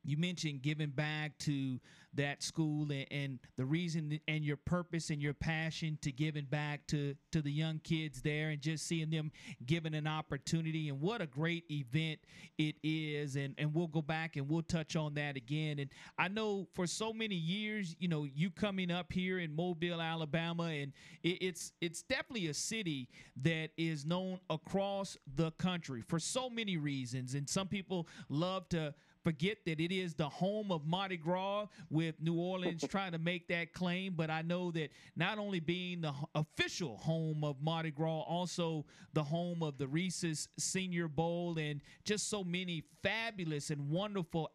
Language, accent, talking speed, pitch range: English, American, 180 wpm, 155-180 Hz